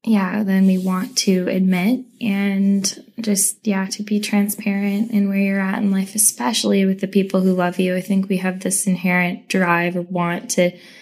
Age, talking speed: 10-29, 190 wpm